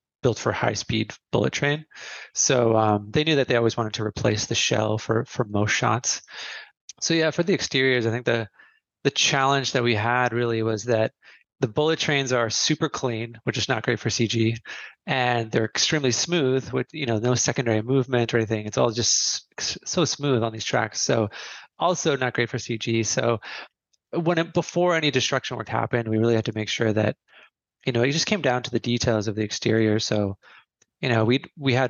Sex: male